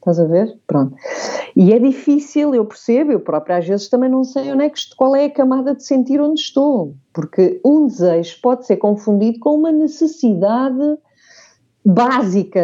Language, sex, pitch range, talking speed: English, female, 175-260 Hz, 175 wpm